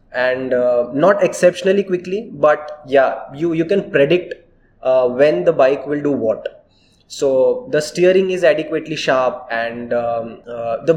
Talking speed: 155 wpm